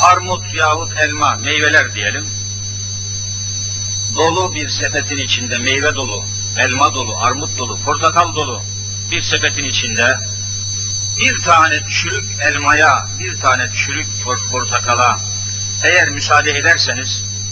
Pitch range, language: 100-105 Hz, Turkish